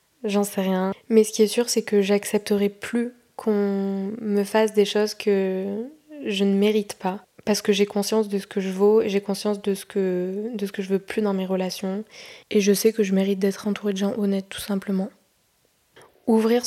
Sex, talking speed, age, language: female, 210 wpm, 20-39, French